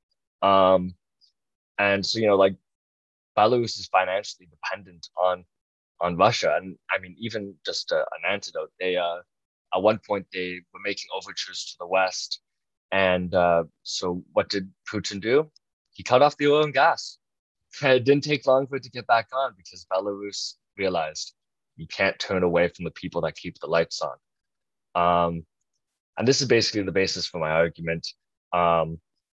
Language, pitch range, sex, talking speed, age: English, 85-105 Hz, male, 170 wpm, 20-39